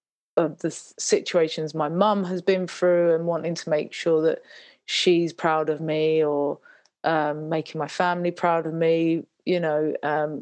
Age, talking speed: 30-49, 165 wpm